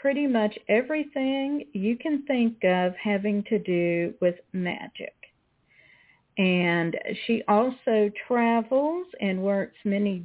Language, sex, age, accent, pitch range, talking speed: English, female, 50-69, American, 185-235 Hz, 110 wpm